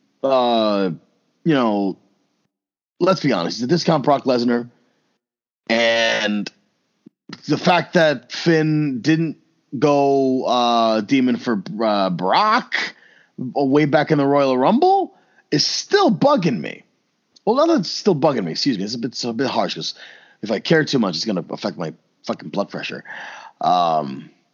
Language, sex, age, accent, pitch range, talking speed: English, male, 30-49, American, 95-150 Hz, 155 wpm